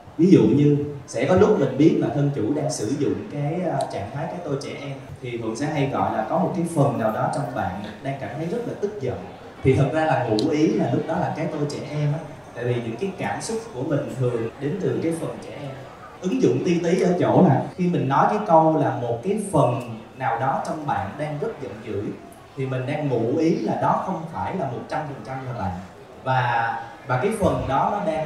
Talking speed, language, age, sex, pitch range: 255 wpm, Vietnamese, 20-39, male, 130-160 Hz